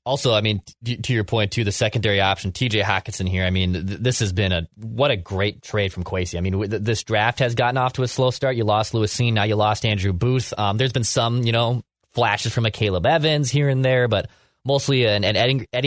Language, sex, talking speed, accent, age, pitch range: English, male, 255 wpm, American, 20-39, 100-125 Hz